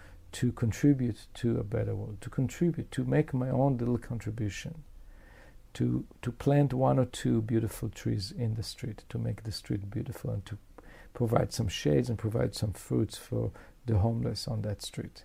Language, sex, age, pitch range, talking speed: English, male, 50-69, 110-155 Hz, 175 wpm